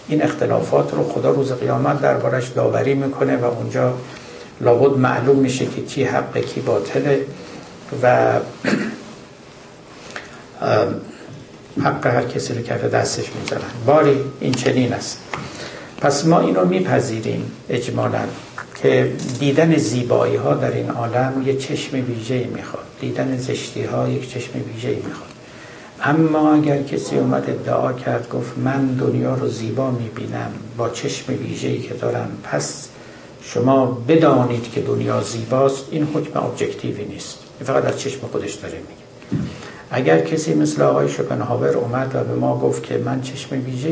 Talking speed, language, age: 140 wpm, Persian, 60-79